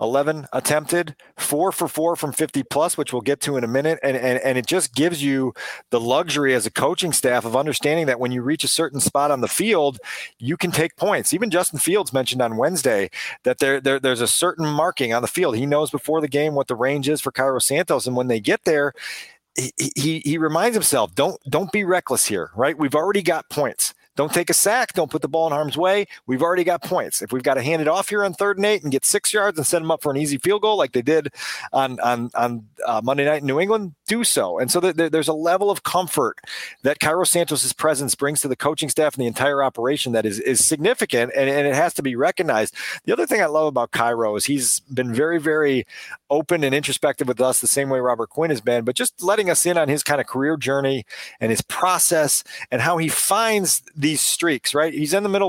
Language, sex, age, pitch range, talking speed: English, male, 40-59, 130-165 Hz, 245 wpm